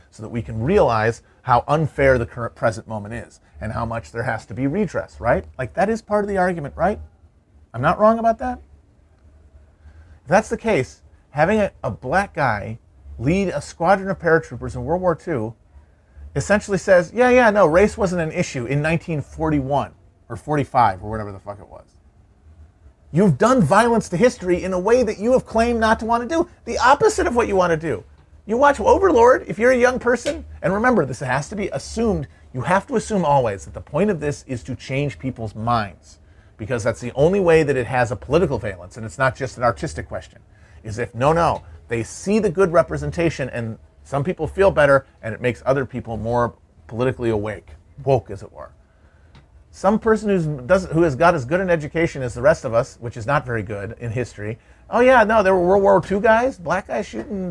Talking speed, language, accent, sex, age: 210 wpm, English, American, male, 40-59